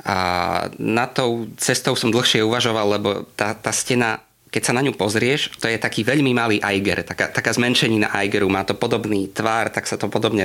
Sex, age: male, 20-39